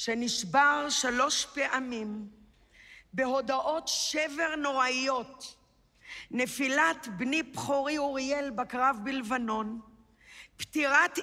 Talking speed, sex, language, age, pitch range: 70 wpm, female, Hebrew, 50-69, 255-305 Hz